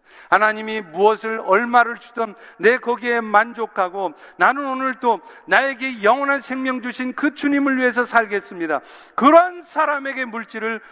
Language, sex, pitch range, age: Korean, male, 175-230 Hz, 50-69